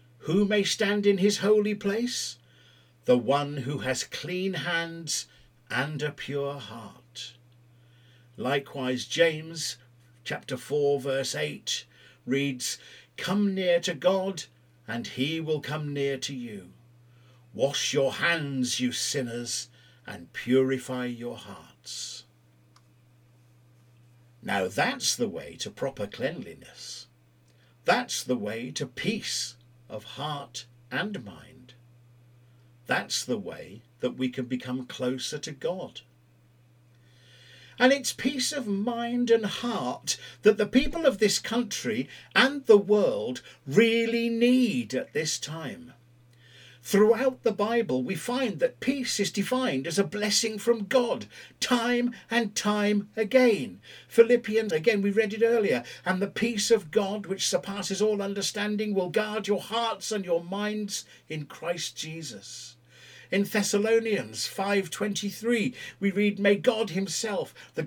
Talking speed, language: 125 wpm, English